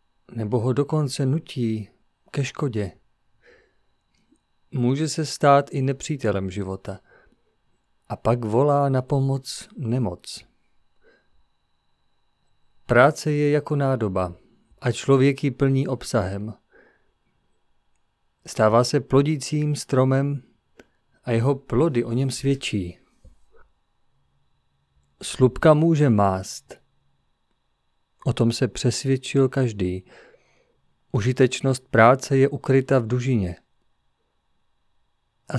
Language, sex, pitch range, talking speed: Czech, male, 105-140 Hz, 90 wpm